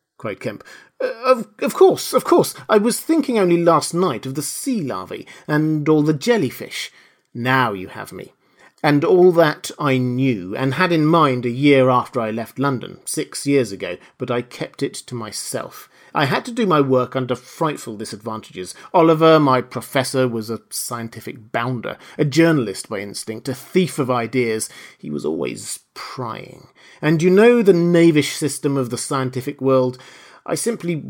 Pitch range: 115-155 Hz